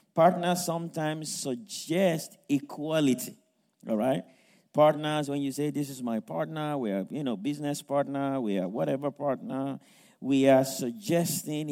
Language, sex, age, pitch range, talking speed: English, male, 50-69, 135-185 Hz, 140 wpm